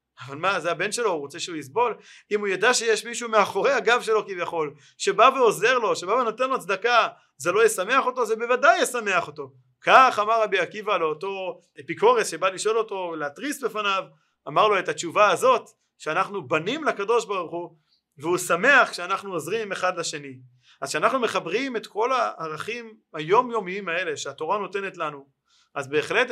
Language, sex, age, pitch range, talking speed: Hebrew, male, 30-49, 170-235 Hz, 170 wpm